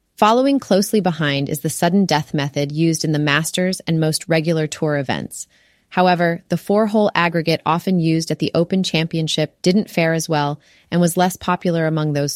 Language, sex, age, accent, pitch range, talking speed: English, female, 30-49, American, 150-185 Hz, 175 wpm